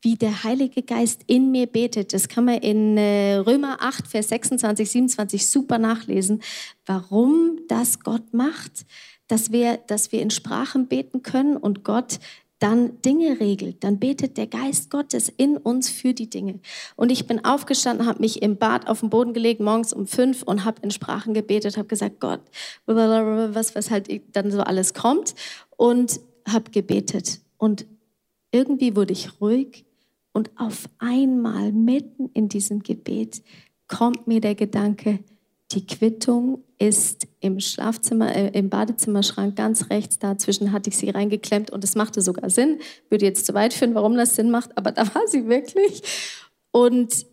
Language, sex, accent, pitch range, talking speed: German, female, German, 210-245 Hz, 165 wpm